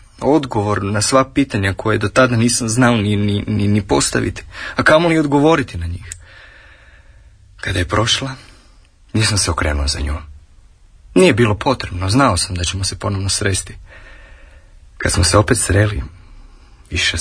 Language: Croatian